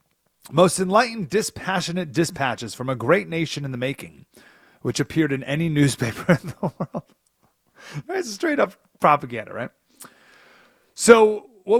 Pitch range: 115-160 Hz